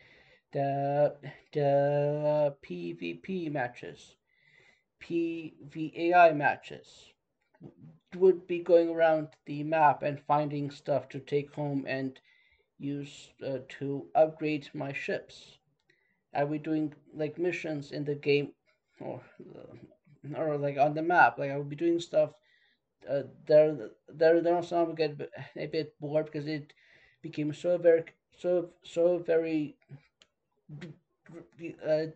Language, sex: English, male